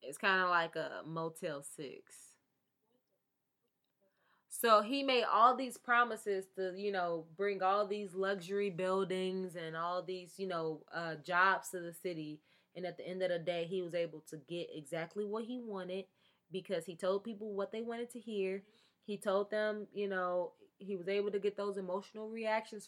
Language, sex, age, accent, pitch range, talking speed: English, female, 20-39, American, 170-210 Hz, 180 wpm